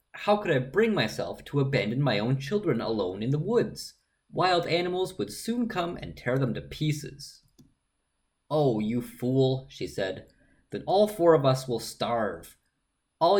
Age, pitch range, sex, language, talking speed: 30-49, 110-155 Hz, male, English, 165 wpm